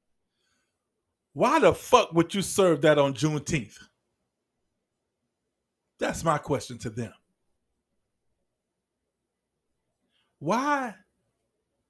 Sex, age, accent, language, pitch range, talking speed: male, 50-69, American, English, 140-195 Hz, 75 wpm